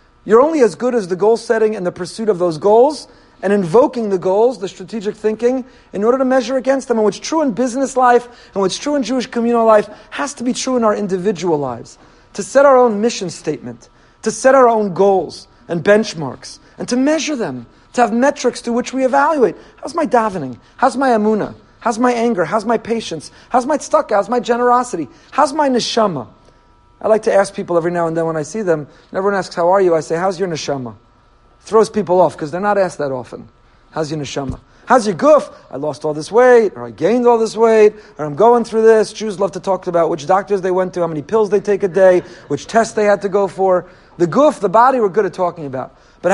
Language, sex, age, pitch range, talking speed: English, male, 40-59, 175-245 Hz, 235 wpm